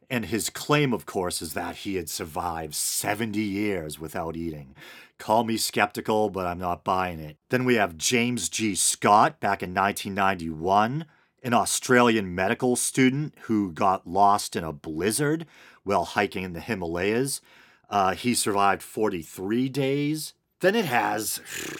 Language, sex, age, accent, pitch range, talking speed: English, male, 40-59, American, 95-135 Hz, 150 wpm